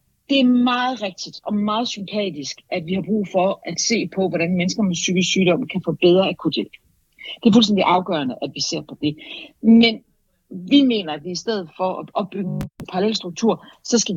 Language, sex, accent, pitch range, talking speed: Danish, female, native, 170-215 Hz, 200 wpm